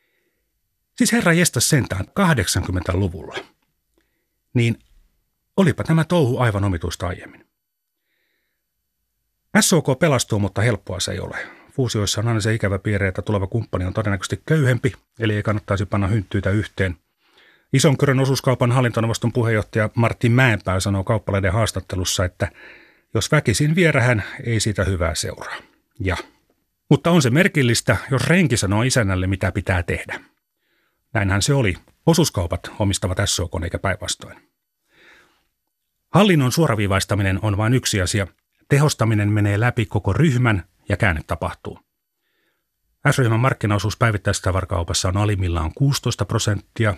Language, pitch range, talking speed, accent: Finnish, 95-130 Hz, 120 wpm, native